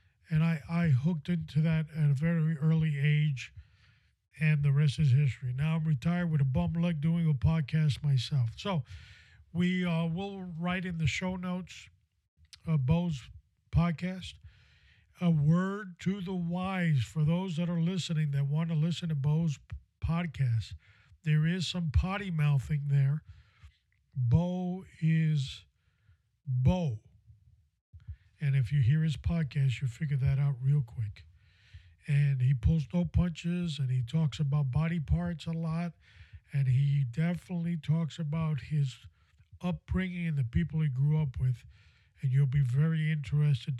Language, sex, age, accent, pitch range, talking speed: English, male, 50-69, American, 115-165 Hz, 150 wpm